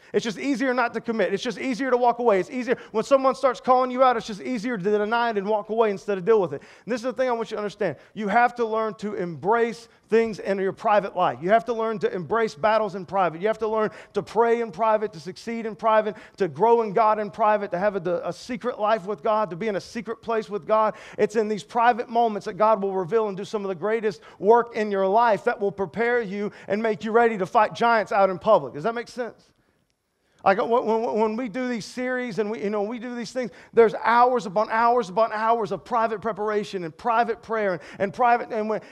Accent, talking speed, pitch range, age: American, 255 wpm, 210-240 Hz, 40-59